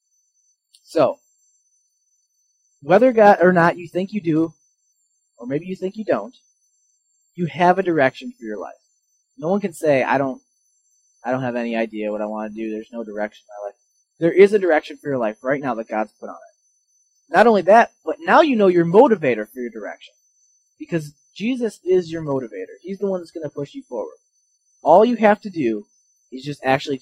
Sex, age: male, 20-39